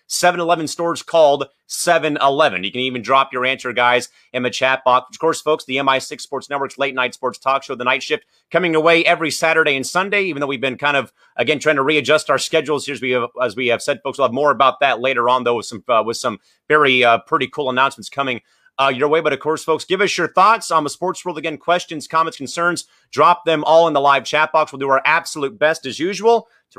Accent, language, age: American, English, 30-49